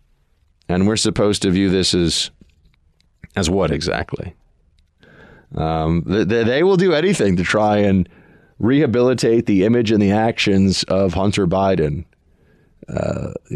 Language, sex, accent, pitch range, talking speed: English, male, American, 90-125 Hz, 135 wpm